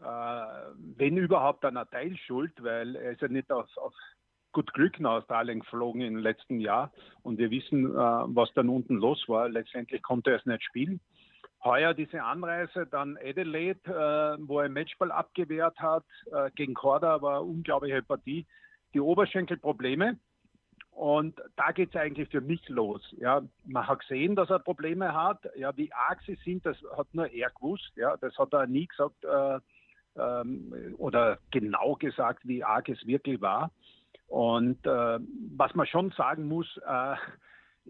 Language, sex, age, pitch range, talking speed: German, male, 50-69, 130-170 Hz, 160 wpm